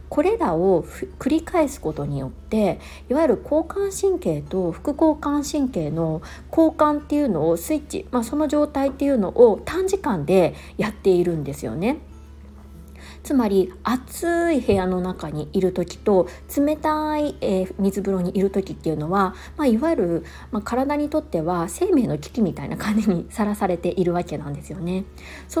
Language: Japanese